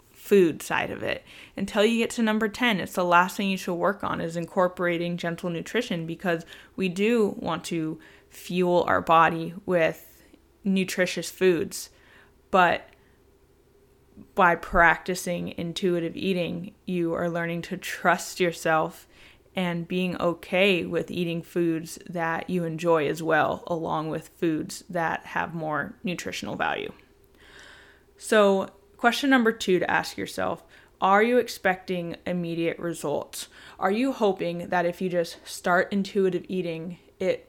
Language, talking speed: English, 140 wpm